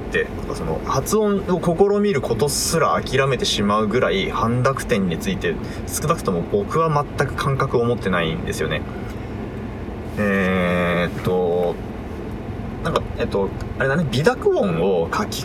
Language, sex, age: Japanese, male, 20-39